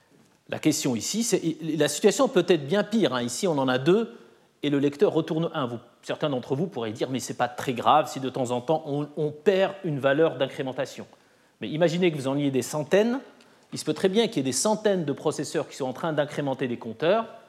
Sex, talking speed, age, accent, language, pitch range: male, 245 wpm, 30-49, French, French, 135-190 Hz